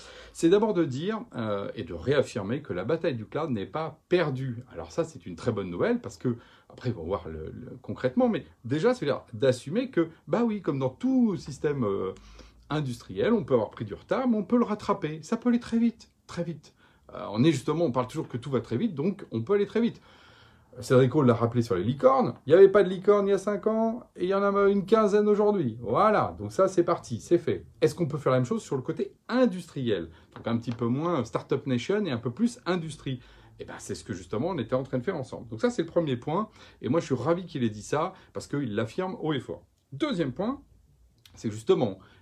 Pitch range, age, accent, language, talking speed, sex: 115-185 Hz, 40-59, French, French, 245 wpm, male